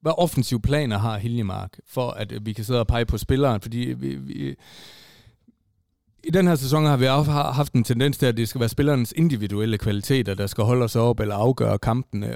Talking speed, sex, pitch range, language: 205 wpm, male, 110-135 Hz, Danish